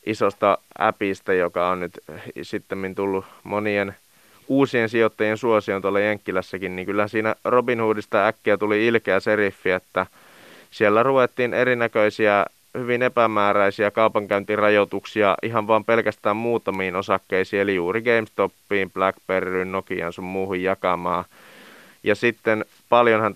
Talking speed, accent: 115 wpm, native